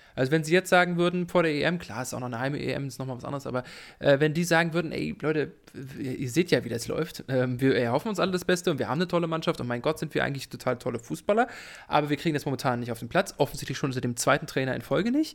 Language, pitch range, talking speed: English, 130-170 Hz, 295 wpm